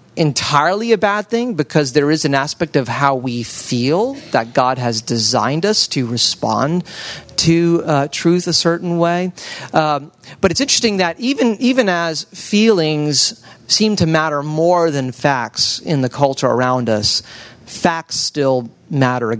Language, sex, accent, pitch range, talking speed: English, male, American, 130-175 Hz, 155 wpm